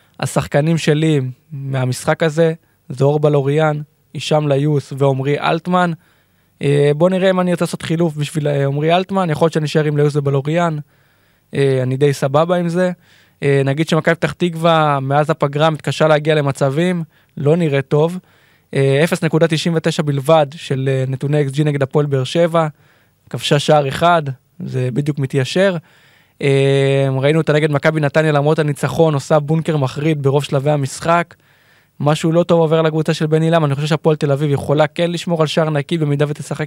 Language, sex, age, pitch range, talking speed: Hebrew, male, 20-39, 140-160 Hz, 160 wpm